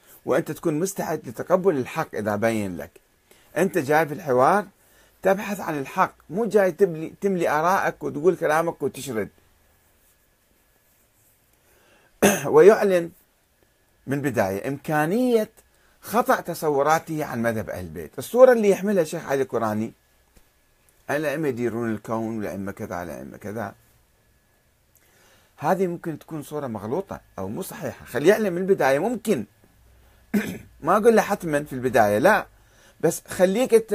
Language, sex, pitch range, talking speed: Arabic, male, 115-195 Hz, 120 wpm